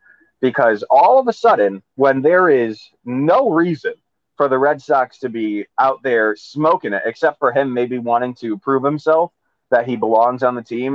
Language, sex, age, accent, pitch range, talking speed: English, male, 20-39, American, 110-145 Hz, 185 wpm